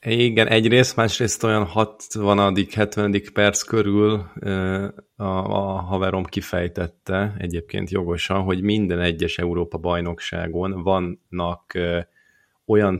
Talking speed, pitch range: 90 wpm, 85-100 Hz